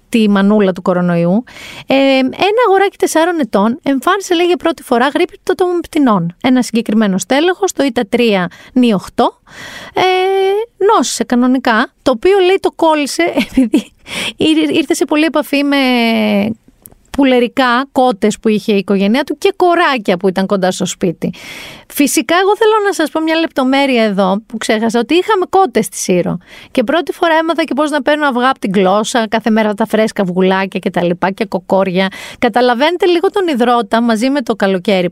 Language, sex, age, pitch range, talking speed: Greek, female, 30-49, 210-325 Hz, 165 wpm